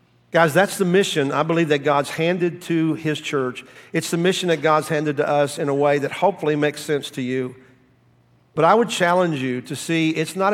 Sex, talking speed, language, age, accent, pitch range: male, 215 wpm, English, 50-69, American, 145-185 Hz